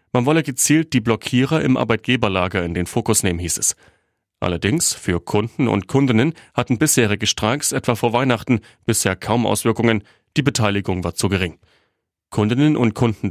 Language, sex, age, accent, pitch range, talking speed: German, male, 30-49, German, 95-125 Hz, 160 wpm